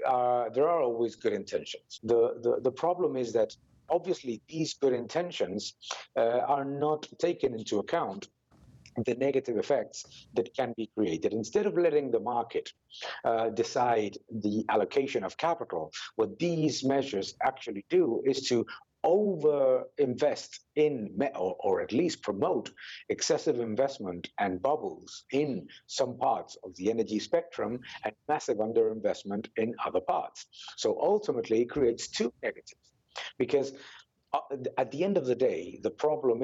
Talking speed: 145 wpm